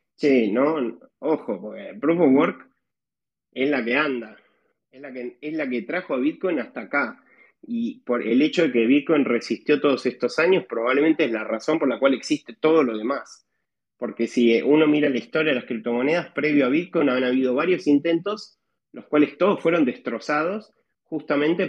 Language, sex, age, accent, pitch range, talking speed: Spanish, male, 30-49, Argentinian, 130-180 Hz, 185 wpm